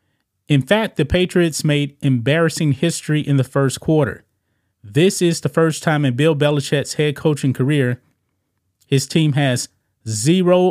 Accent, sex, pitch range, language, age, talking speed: American, male, 110-160 Hz, English, 30-49, 145 wpm